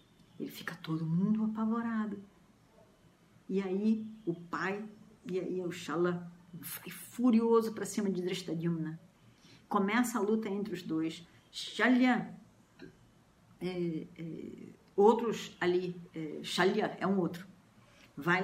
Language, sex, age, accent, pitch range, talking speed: Portuguese, female, 50-69, Brazilian, 170-215 Hz, 105 wpm